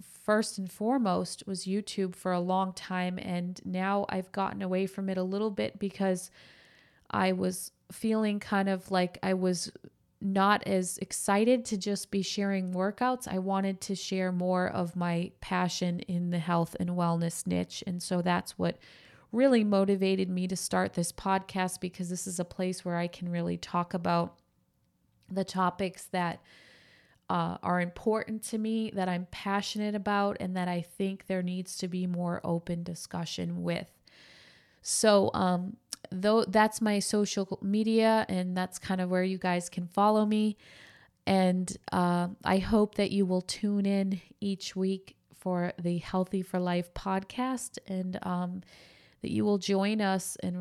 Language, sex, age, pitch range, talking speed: English, female, 20-39, 180-200 Hz, 165 wpm